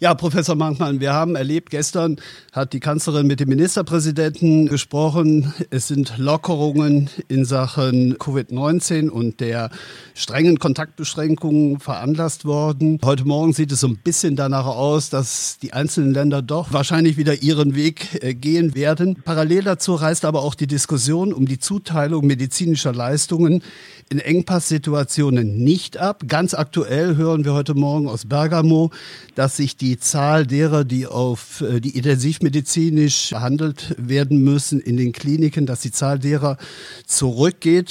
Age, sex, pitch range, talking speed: 50-69, male, 135-160 Hz, 145 wpm